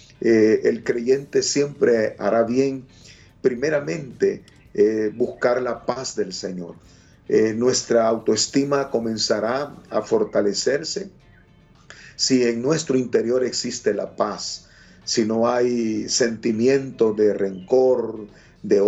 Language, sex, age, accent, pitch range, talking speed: Spanish, male, 50-69, Venezuelan, 110-130 Hz, 105 wpm